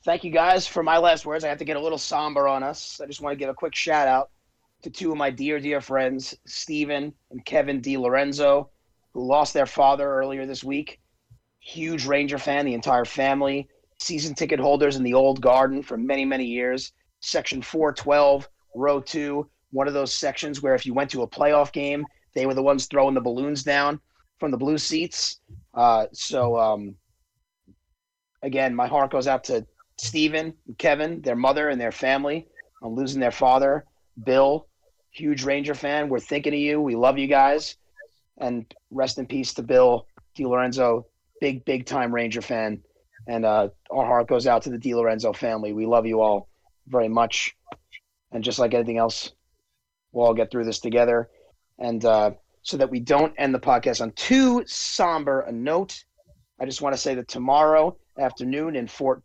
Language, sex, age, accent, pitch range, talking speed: English, male, 30-49, American, 125-145 Hz, 185 wpm